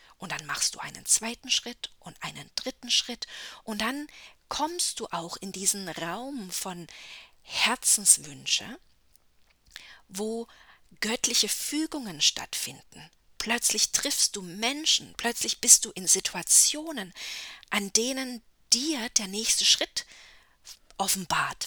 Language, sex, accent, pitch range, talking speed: English, female, German, 190-260 Hz, 115 wpm